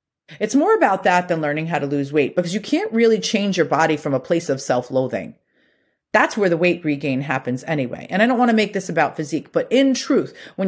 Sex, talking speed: female, 230 wpm